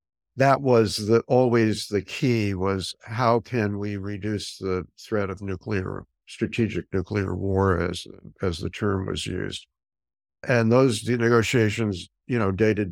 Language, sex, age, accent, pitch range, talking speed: English, male, 60-79, American, 95-115 Hz, 145 wpm